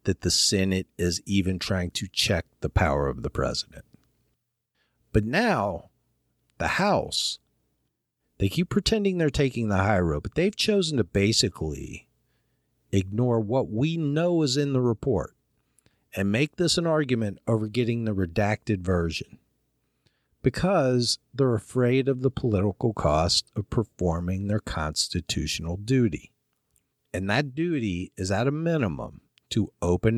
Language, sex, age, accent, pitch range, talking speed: English, male, 50-69, American, 90-130 Hz, 135 wpm